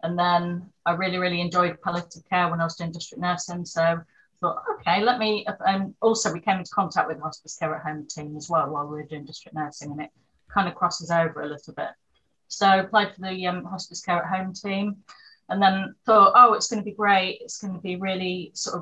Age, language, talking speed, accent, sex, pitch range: 30-49, English, 240 wpm, British, female, 165-190 Hz